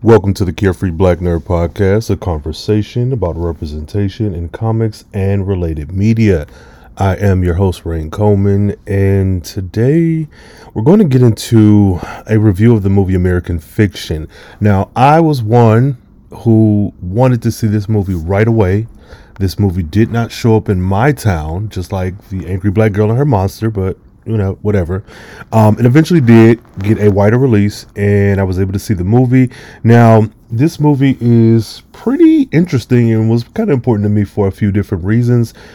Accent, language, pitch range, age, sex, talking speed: American, English, 100-120 Hz, 30-49, male, 175 wpm